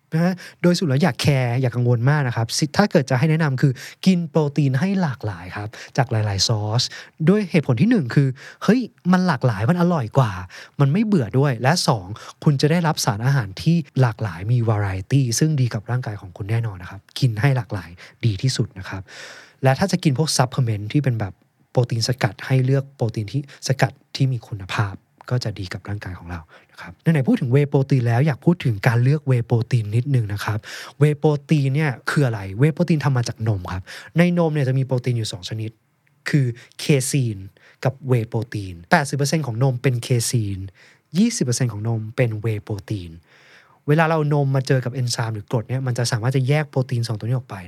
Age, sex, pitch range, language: 20-39, male, 115-150 Hz, Thai